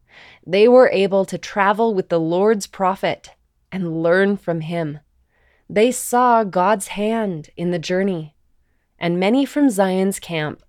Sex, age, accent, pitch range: female, 20-39, American, 165-215 Hz